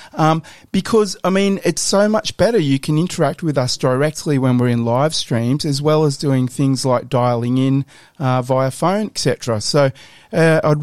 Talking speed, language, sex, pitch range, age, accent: 190 wpm, English, male, 120-150 Hz, 30-49, Australian